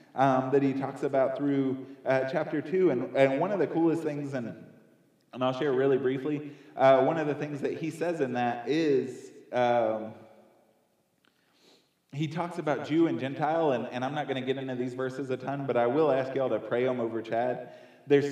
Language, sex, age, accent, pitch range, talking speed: English, male, 20-39, American, 110-140 Hz, 210 wpm